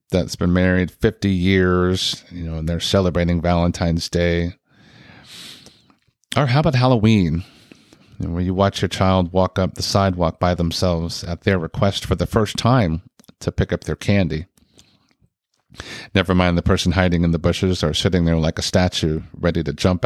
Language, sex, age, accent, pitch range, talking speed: English, male, 40-59, American, 90-105 Hz, 170 wpm